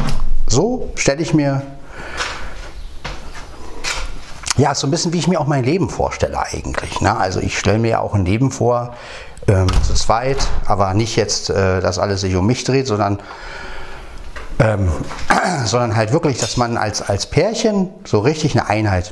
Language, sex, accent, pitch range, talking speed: German, male, German, 90-135 Hz, 170 wpm